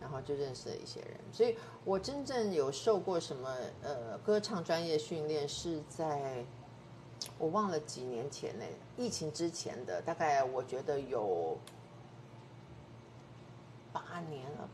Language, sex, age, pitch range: Chinese, female, 50-69, 130-165 Hz